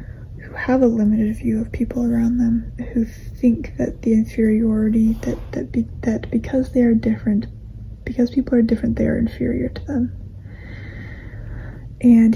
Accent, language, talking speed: American, English, 150 wpm